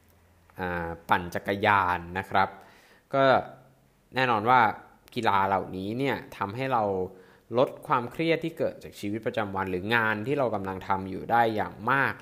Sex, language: male, Thai